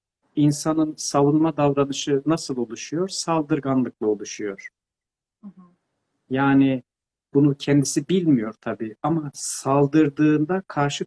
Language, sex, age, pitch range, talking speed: Turkish, male, 50-69, 140-180 Hz, 80 wpm